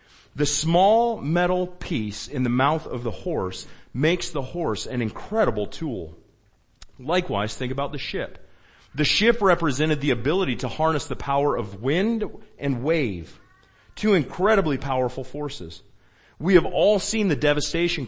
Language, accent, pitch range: English, American, 120-170 Hz